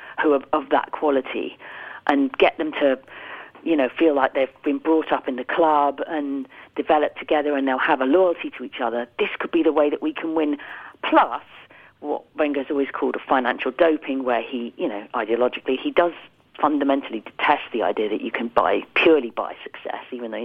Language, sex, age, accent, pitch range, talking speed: English, female, 40-59, British, 125-155 Hz, 200 wpm